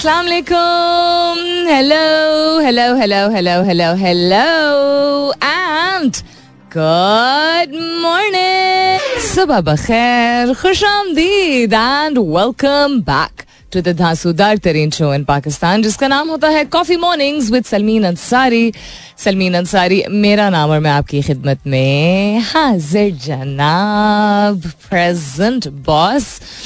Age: 30-49